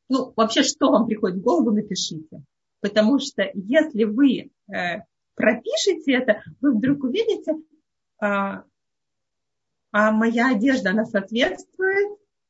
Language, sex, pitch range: Russian, female, 210-270 Hz